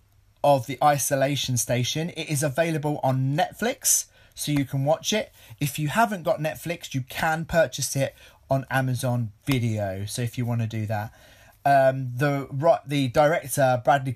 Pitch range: 115-145 Hz